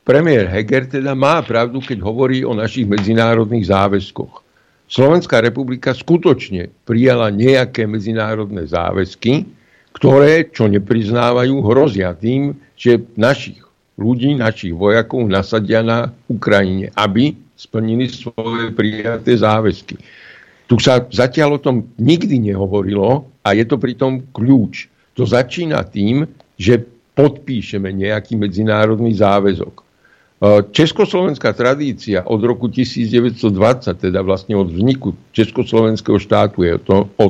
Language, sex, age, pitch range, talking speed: Slovak, male, 60-79, 105-125 Hz, 115 wpm